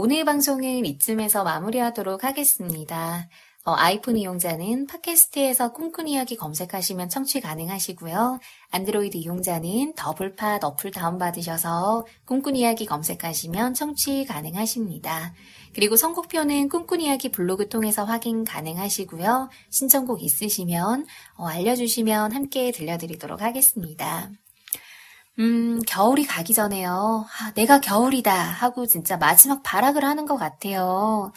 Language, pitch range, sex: Korean, 180-245 Hz, female